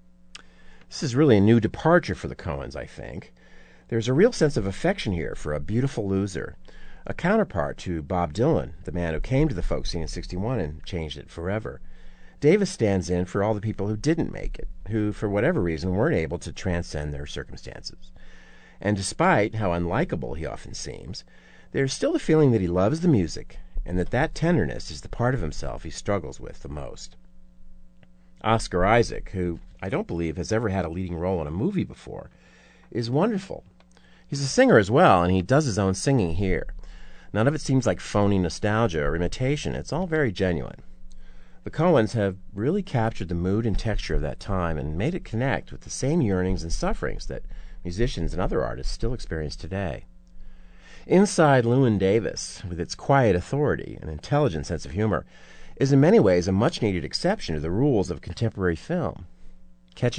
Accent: American